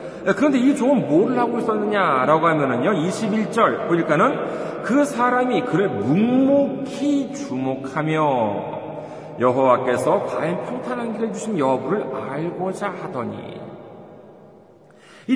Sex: male